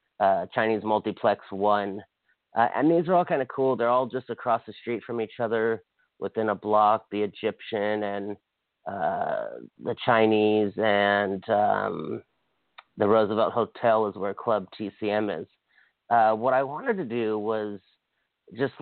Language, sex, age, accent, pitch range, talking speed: English, male, 40-59, American, 105-125 Hz, 155 wpm